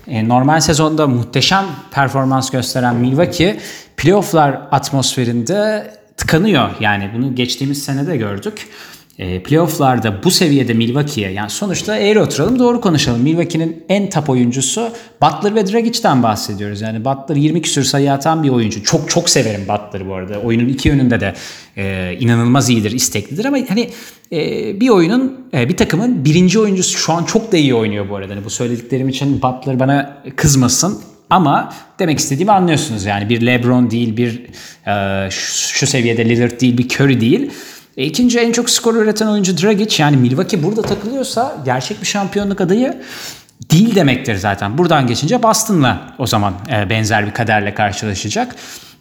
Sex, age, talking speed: male, 30-49, 155 wpm